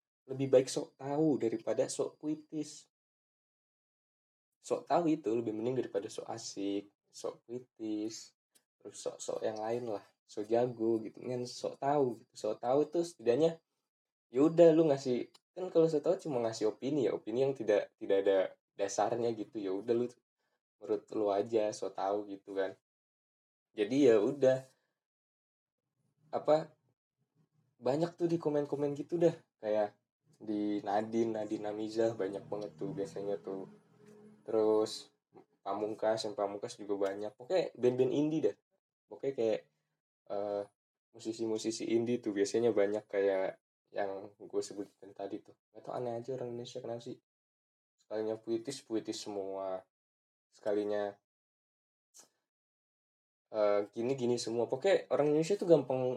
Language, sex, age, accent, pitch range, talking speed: Indonesian, male, 10-29, native, 105-150 Hz, 135 wpm